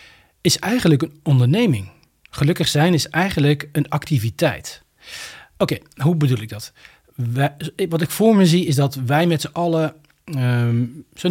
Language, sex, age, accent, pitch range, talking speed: Dutch, male, 40-59, Dutch, 130-165 Hz, 145 wpm